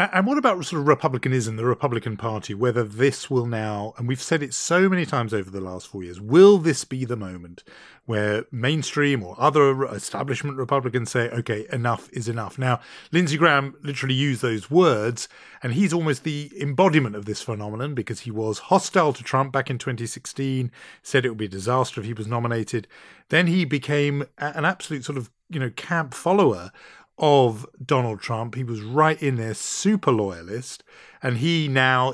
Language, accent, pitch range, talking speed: English, British, 115-145 Hz, 185 wpm